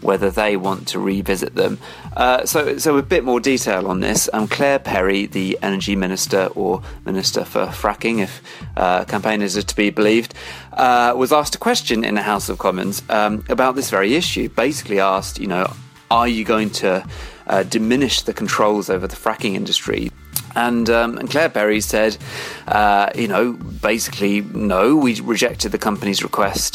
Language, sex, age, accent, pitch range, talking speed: English, male, 30-49, British, 100-130 Hz, 175 wpm